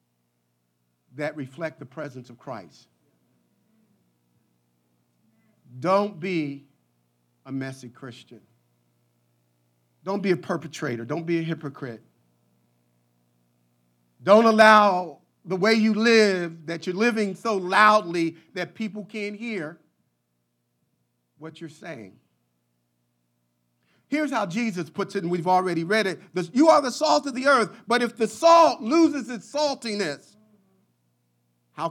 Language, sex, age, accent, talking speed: English, male, 50-69, American, 115 wpm